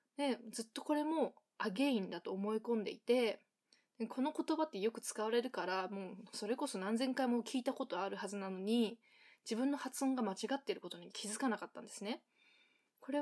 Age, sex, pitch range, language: 20-39, female, 205-260 Hz, Japanese